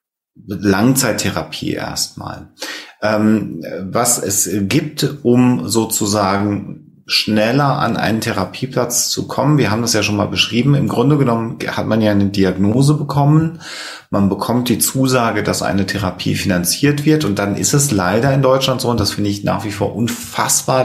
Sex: male